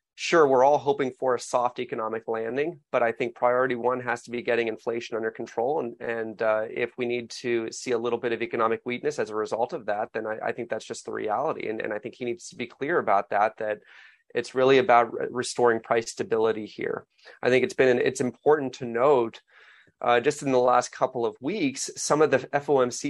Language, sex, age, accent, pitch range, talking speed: English, male, 30-49, American, 115-135 Hz, 225 wpm